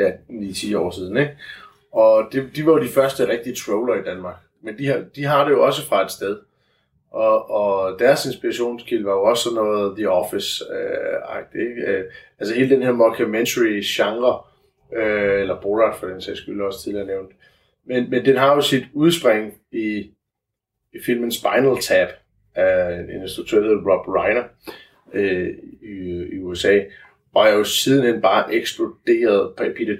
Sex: male